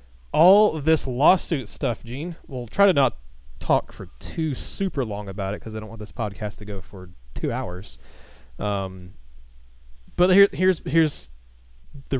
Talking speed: 165 wpm